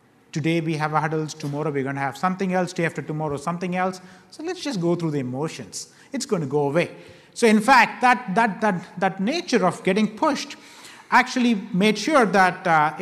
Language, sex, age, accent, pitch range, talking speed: English, male, 30-49, Indian, 165-205 Hz, 205 wpm